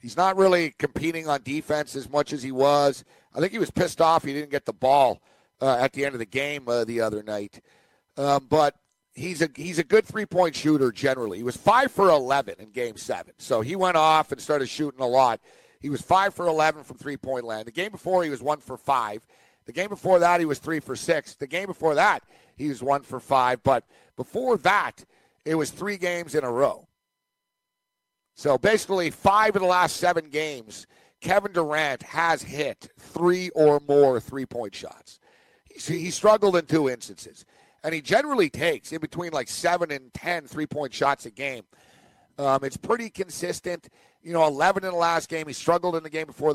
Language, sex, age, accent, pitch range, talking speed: English, male, 50-69, American, 140-175 Hz, 200 wpm